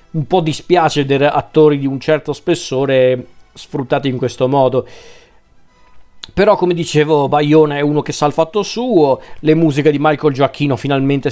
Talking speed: 160 wpm